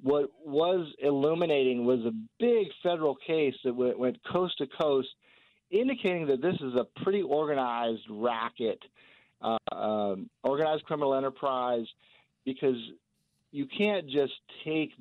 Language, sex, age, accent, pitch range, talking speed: English, male, 40-59, American, 120-145 Hz, 125 wpm